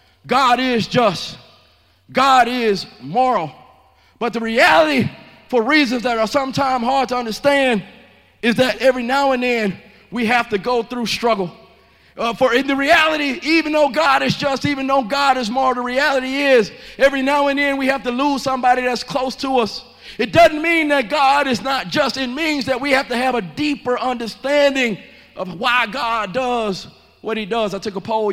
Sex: male